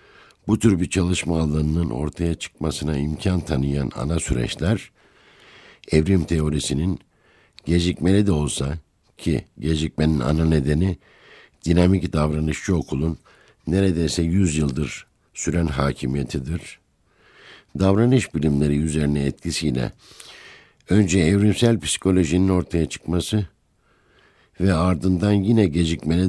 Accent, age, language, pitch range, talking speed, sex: native, 60-79, Turkish, 75-95 Hz, 95 wpm, male